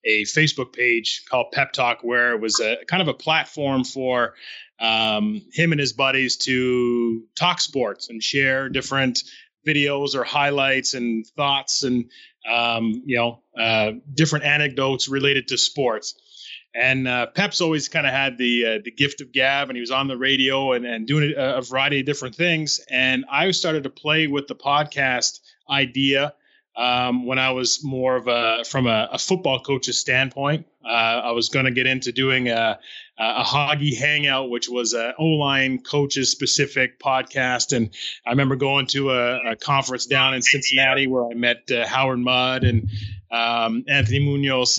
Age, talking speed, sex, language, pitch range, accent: 30-49, 175 wpm, male, English, 125-145 Hz, American